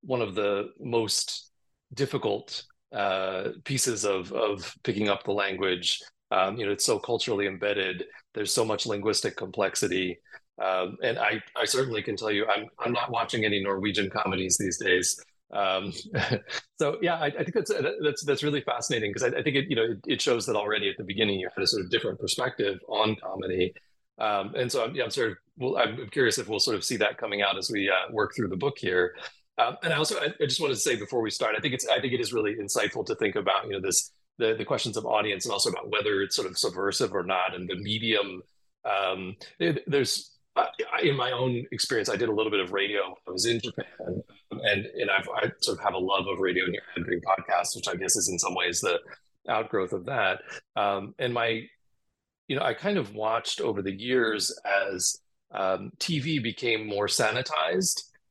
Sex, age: male, 30-49